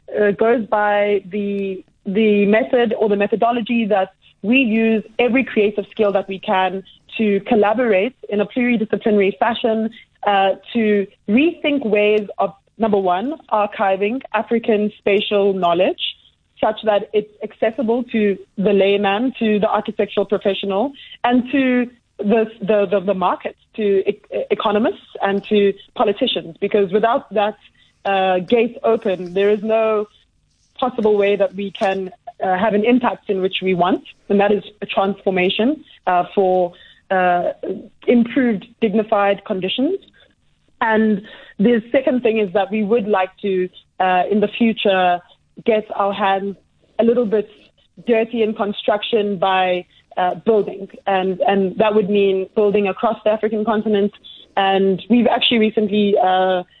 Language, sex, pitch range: English, female, 195-225 Hz